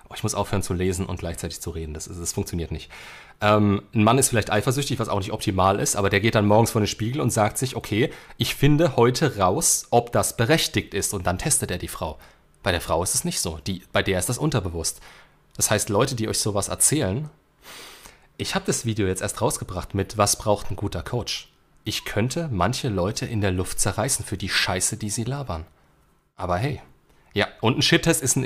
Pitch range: 95-130 Hz